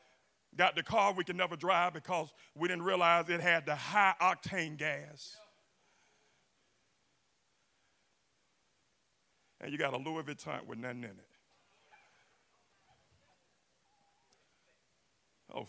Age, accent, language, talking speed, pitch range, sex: 50-69, American, English, 105 wpm, 160-215 Hz, male